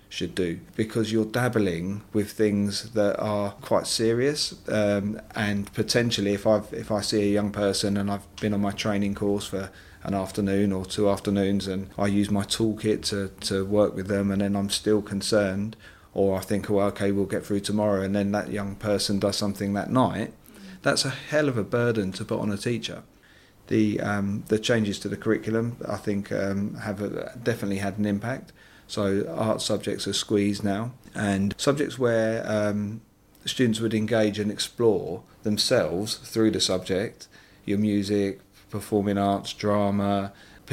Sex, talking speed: male, 175 wpm